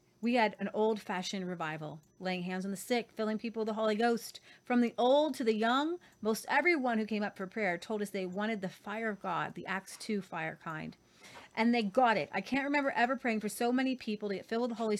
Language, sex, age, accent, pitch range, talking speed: English, female, 30-49, American, 195-240 Hz, 245 wpm